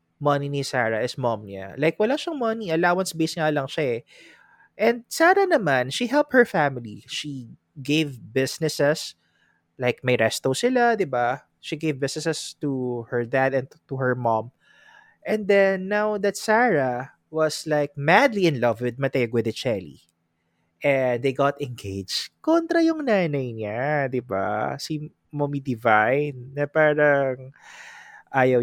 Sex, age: male, 20-39